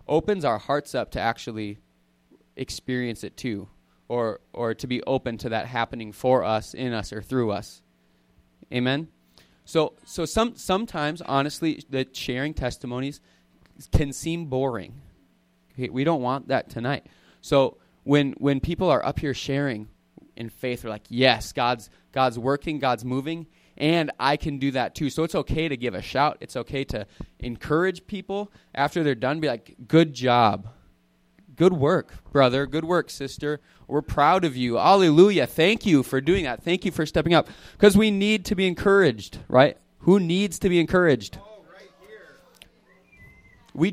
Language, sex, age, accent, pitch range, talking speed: English, male, 20-39, American, 115-160 Hz, 165 wpm